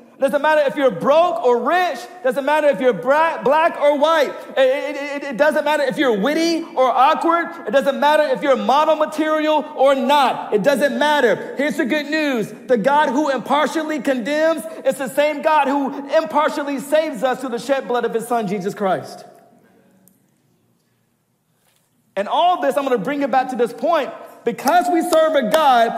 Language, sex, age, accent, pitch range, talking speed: English, male, 40-59, American, 240-305 Hz, 185 wpm